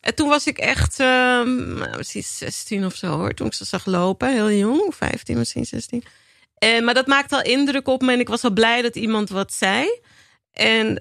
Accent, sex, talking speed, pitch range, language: Dutch, female, 220 wpm, 185-235 Hz, Dutch